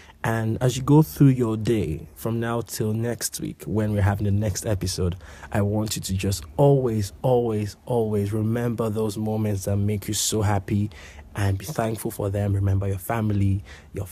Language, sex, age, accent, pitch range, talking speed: English, male, 20-39, Jamaican, 100-130 Hz, 185 wpm